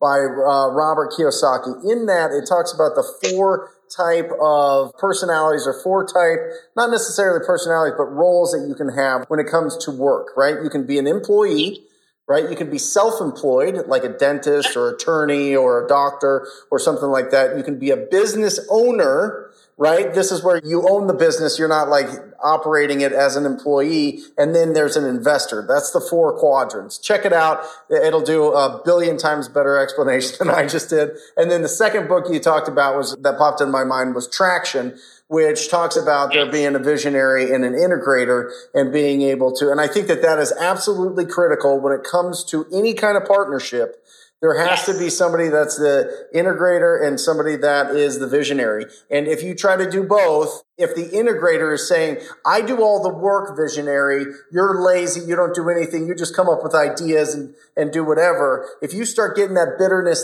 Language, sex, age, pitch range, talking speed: English, male, 30-49, 145-195 Hz, 200 wpm